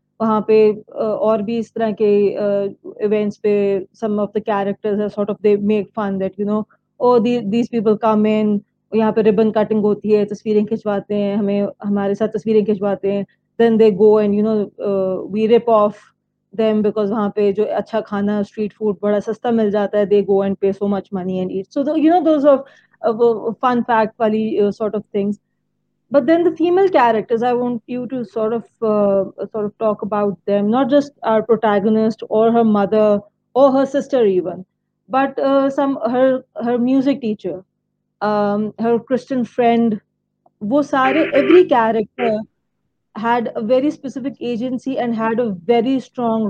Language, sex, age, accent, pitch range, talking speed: English, female, 20-39, Indian, 205-235 Hz, 150 wpm